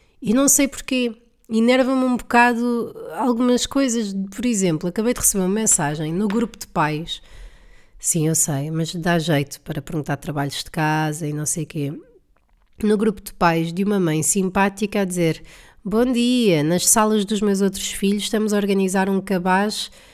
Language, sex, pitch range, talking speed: Portuguese, female, 180-235 Hz, 180 wpm